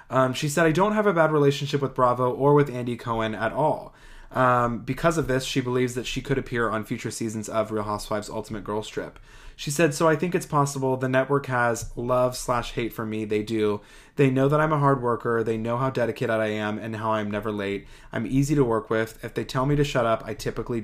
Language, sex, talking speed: English, male, 245 wpm